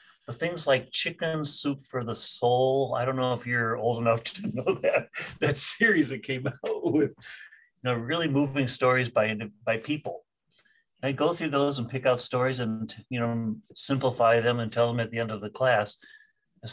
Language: English